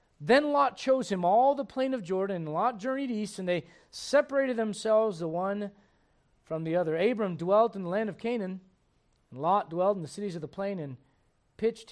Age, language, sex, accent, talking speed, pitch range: 40-59, English, male, American, 200 wpm, 140-190 Hz